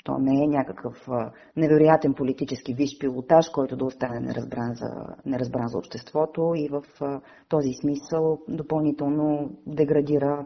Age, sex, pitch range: 30-49, female, 145-170 Hz